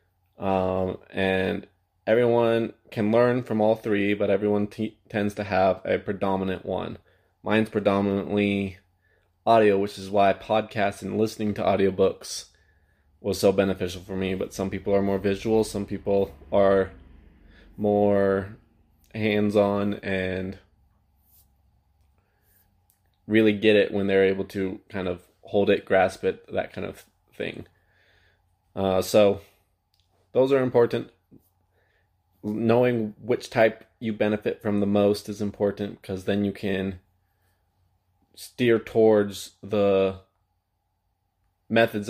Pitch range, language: 95-105 Hz, English